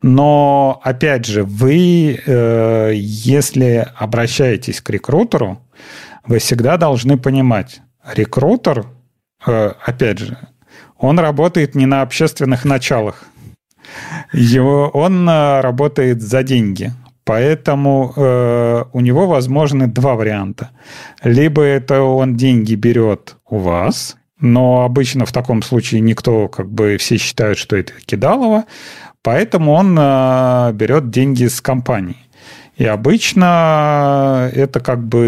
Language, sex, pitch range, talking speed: Russian, male, 115-140 Hz, 110 wpm